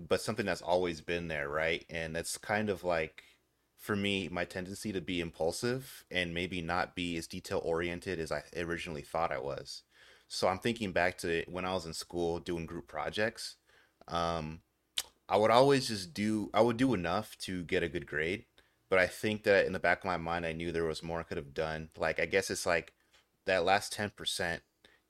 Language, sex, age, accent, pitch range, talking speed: English, male, 30-49, American, 85-100 Hz, 210 wpm